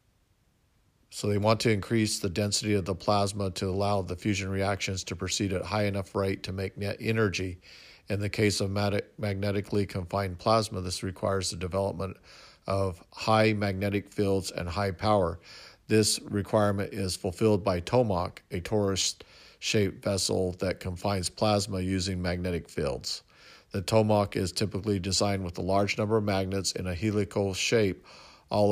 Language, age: English, 50-69